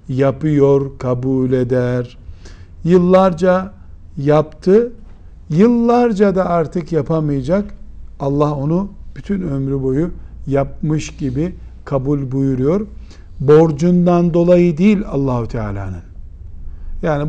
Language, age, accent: Turkish, 50-69, native